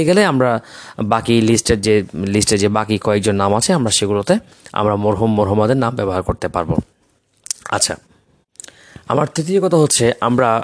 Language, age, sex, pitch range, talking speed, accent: Bengali, 30-49, male, 110-145 Hz, 60 wpm, native